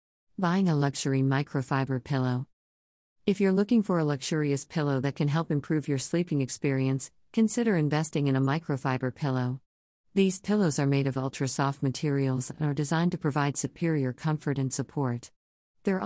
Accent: American